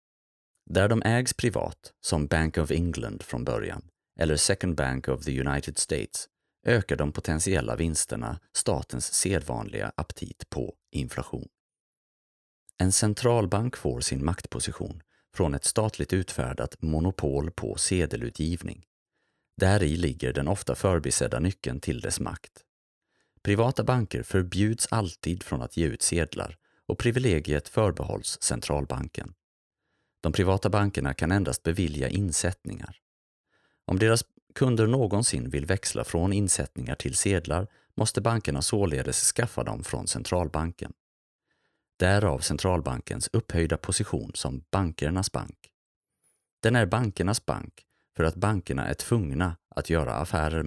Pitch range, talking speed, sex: 75-105 Hz, 125 wpm, male